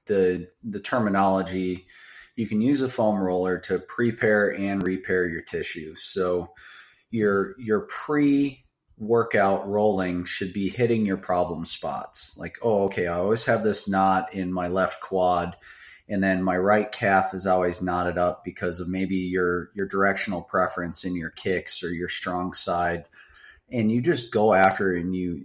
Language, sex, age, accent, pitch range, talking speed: English, male, 30-49, American, 90-105 Hz, 165 wpm